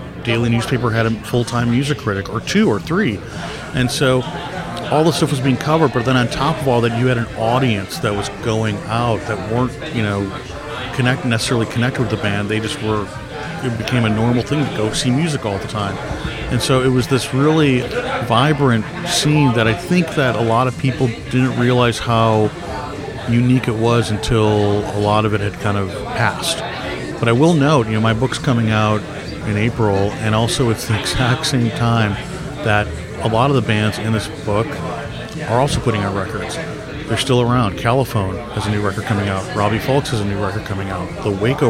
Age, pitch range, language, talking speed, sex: 40-59, 105-130 Hz, English, 205 wpm, male